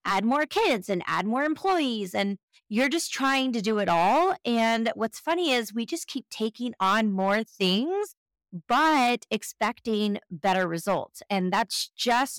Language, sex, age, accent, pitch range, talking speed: English, female, 30-49, American, 205-270 Hz, 160 wpm